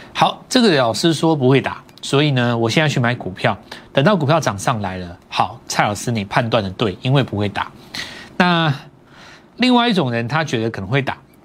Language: Chinese